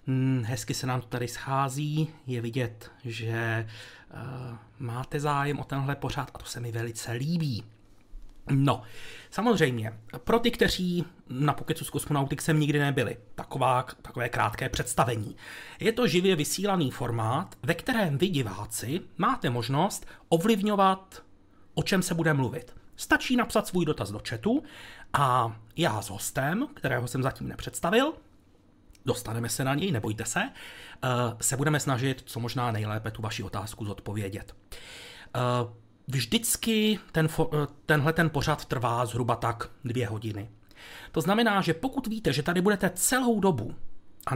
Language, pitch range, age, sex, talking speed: Czech, 115-160 Hz, 40-59, male, 140 wpm